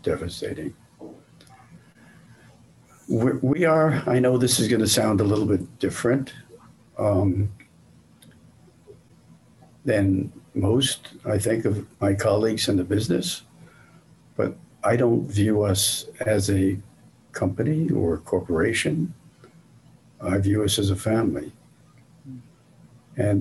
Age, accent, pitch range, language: 60-79, American, 95-125 Hz, English